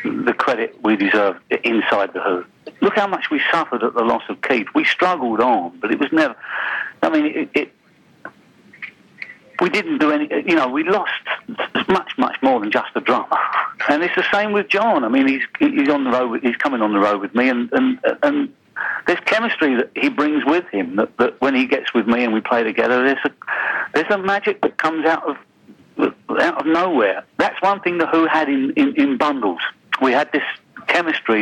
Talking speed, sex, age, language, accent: 210 wpm, male, 50-69, English, British